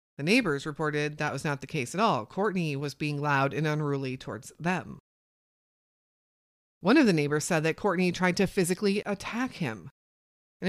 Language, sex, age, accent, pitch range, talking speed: English, female, 30-49, American, 145-205 Hz, 175 wpm